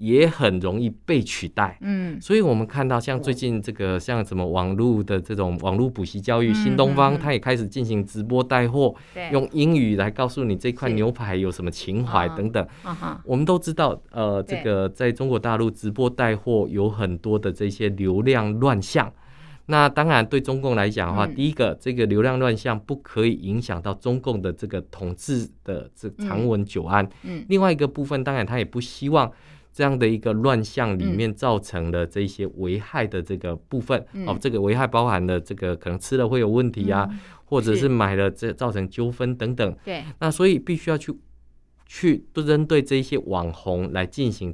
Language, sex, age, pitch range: Chinese, male, 20-39, 100-130 Hz